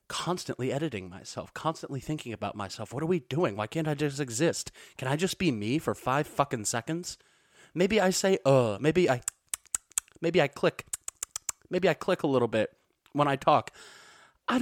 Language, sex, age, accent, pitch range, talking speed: English, male, 30-49, American, 105-140 Hz, 180 wpm